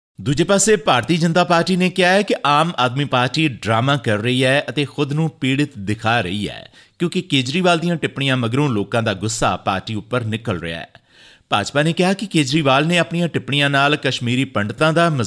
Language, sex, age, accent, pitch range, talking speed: English, male, 50-69, Indian, 110-155 Hz, 140 wpm